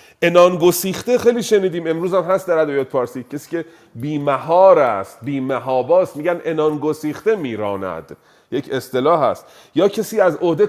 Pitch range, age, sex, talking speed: 135-180 Hz, 30-49, male, 140 wpm